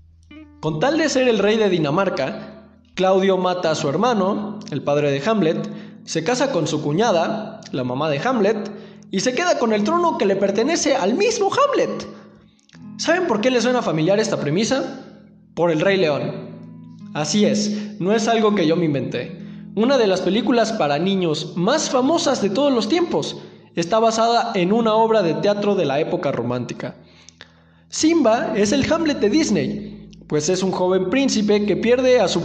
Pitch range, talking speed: 160-230 Hz, 180 wpm